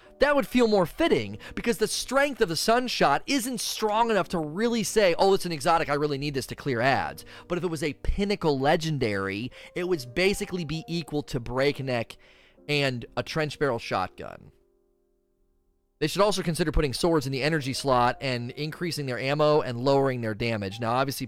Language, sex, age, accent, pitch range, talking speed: English, male, 30-49, American, 130-200 Hz, 190 wpm